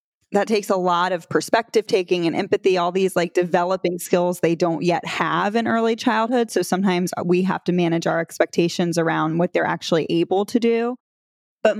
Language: English